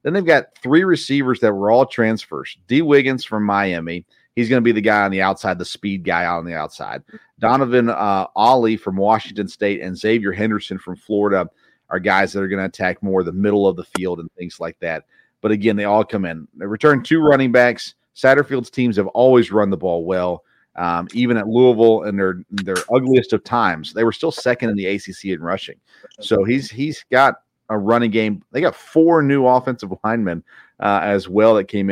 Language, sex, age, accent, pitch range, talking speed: English, male, 40-59, American, 95-120 Hz, 210 wpm